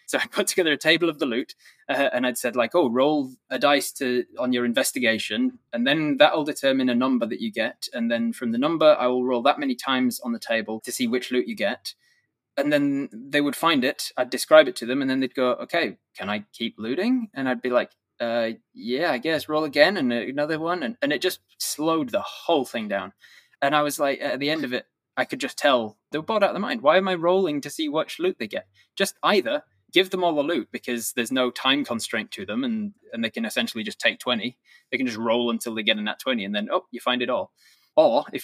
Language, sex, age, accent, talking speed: English, male, 20-39, British, 260 wpm